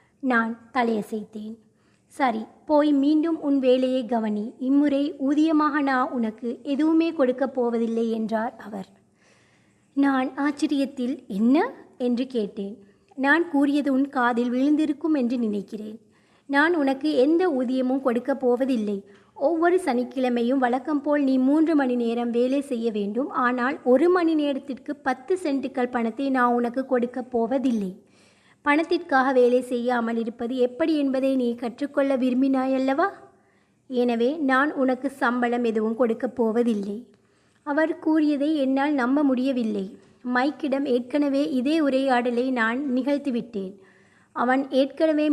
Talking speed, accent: 110 wpm, native